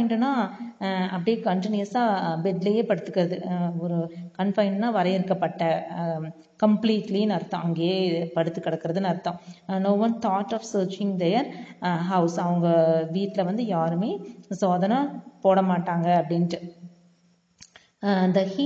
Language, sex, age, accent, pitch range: Tamil, female, 30-49, native, 175-220 Hz